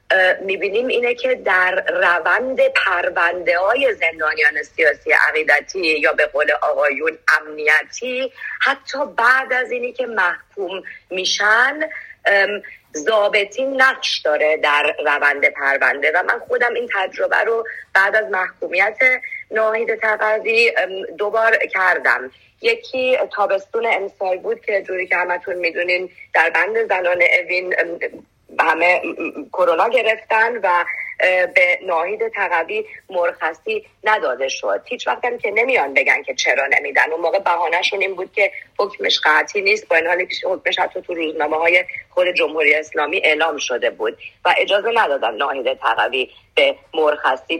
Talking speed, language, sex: 130 wpm, English, female